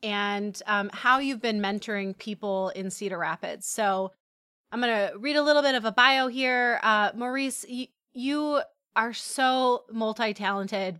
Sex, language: female, English